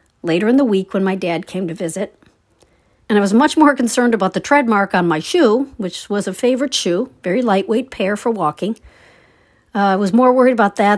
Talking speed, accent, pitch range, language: 215 wpm, American, 180-245 Hz, English